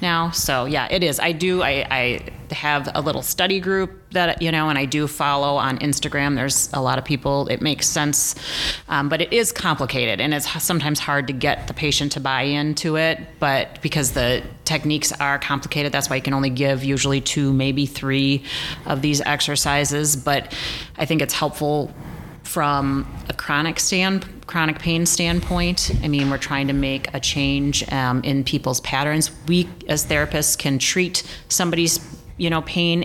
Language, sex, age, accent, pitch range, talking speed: English, female, 30-49, American, 135-150 Hz, 180 wpm